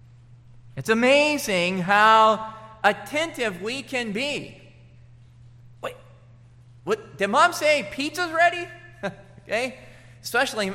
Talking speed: 90 wpm